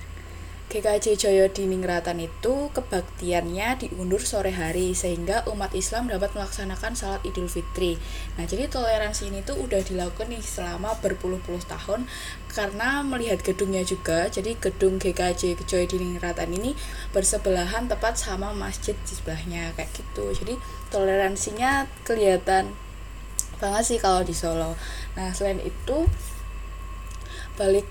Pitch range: 165-210 Hz